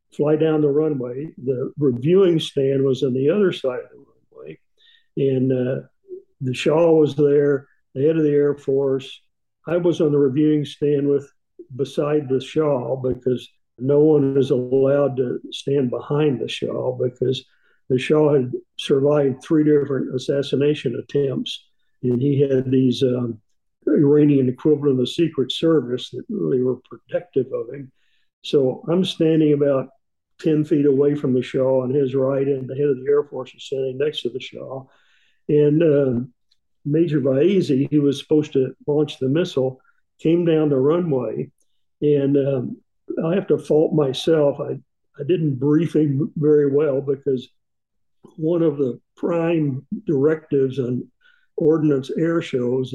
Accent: American